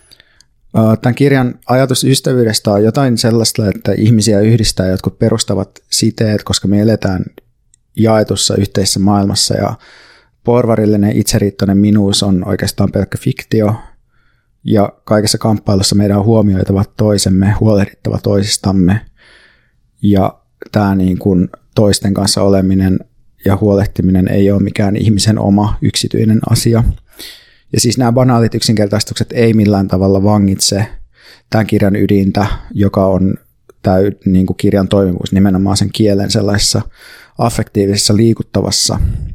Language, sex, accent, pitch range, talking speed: Finnish, male, native, 100-115 Hz, 115 wpm